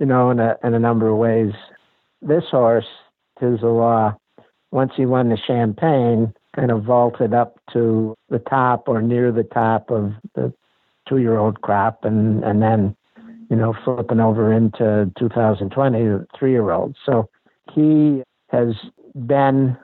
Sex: male